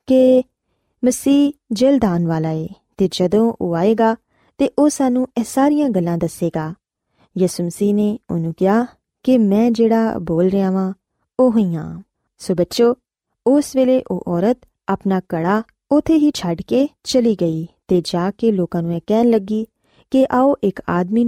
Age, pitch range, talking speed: 20-39, 180-255 Hz, 150 wpm